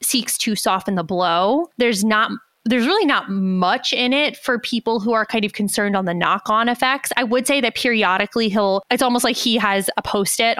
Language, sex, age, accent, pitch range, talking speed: English, female, 20-39, American, 195-240 Hz, 210 wpm